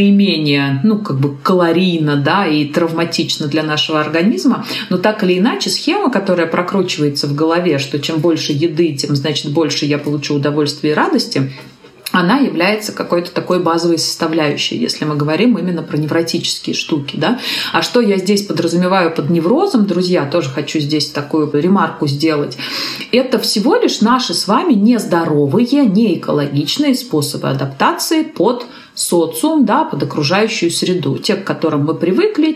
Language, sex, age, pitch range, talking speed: Russian, female, 30-49, 155-225 Hz, 150 wpm